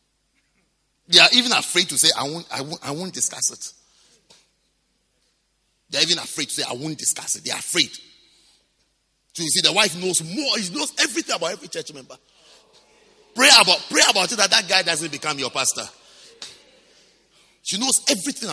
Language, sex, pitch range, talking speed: English, male, 155-225 Hz, 185 wpm